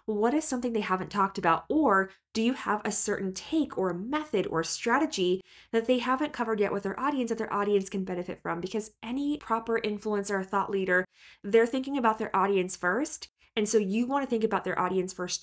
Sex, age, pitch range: female, 20-39, 185-230 Hz